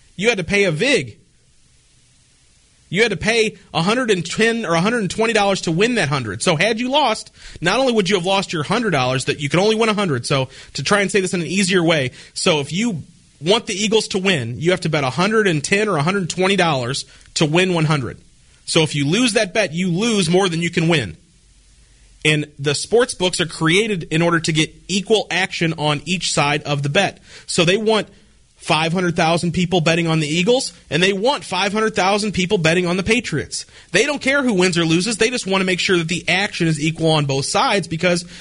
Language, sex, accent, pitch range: English, male, American, 150-205 Hz